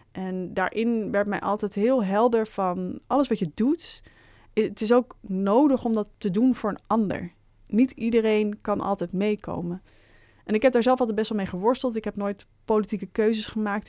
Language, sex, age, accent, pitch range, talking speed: Dutch, female, 20-39, Dutch, 180-225 Hz, 190 wpm